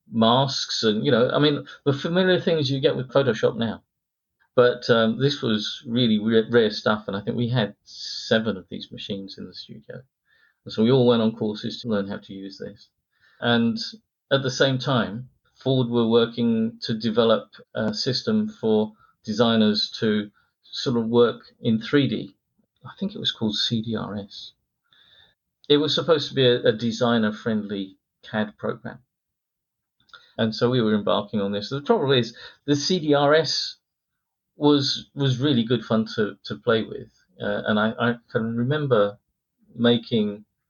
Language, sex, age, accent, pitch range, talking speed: English, male, 50-69, British, 105-130 Hz, 165 wpm